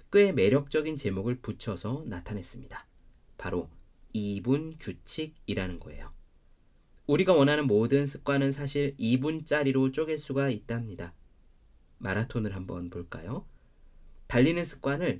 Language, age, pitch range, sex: Korean, 40-59, 90-140 Hz, male